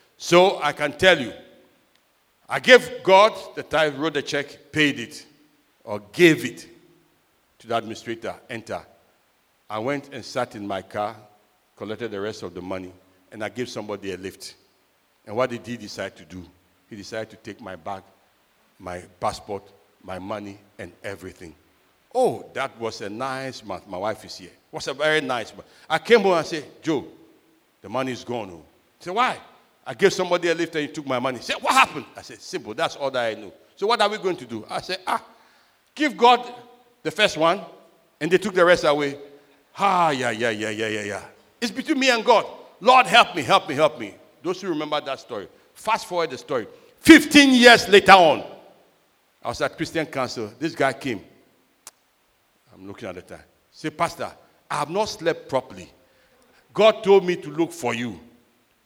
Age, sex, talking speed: 60-79, male, 195 wpm